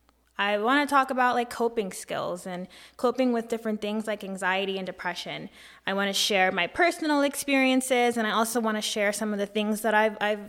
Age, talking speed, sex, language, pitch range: 20-39, 210 wpm, female, English, 190-240 Hz